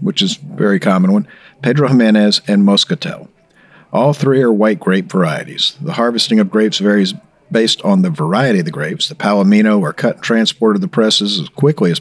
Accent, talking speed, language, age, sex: American, 200 wpm, English, 50-69, male